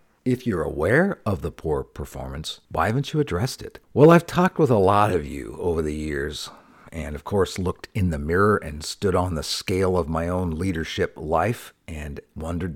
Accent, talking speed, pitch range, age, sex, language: American, 200 wpm, 90-125 Hz, 50-69, male, English